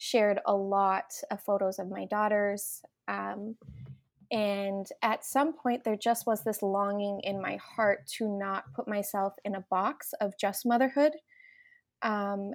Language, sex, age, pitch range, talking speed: English, female, 20-39, 195-220 Hz, 155 wpm